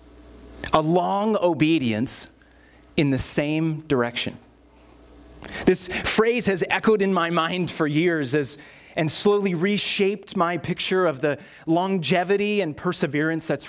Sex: male